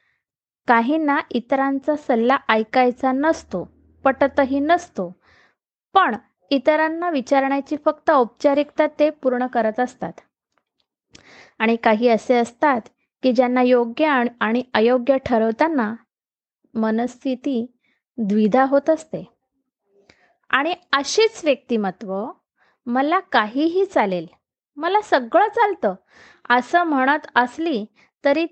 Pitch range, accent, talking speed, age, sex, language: 240-315 Hz, native, 90 wpm, 20-39, female, Marathi